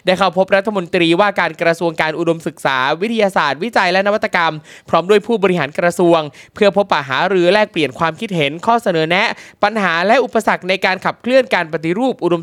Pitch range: 170-220 Hz